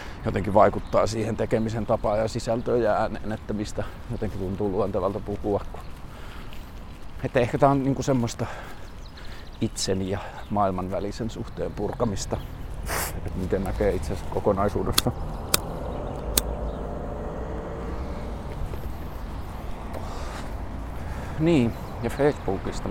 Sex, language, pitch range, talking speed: male, Finnish, 85-120 Hz, 85 wpm